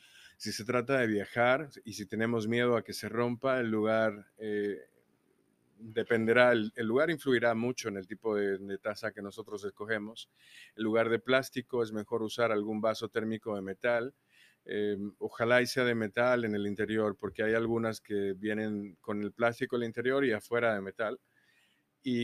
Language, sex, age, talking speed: Spanish, male, 30-49, 185 wpm